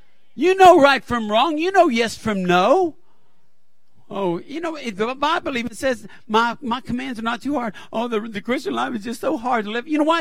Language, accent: English, American